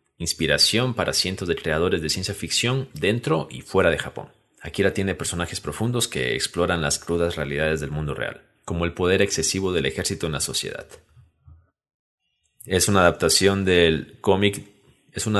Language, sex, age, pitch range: Spanish, male, 30-49, 80-105 Hz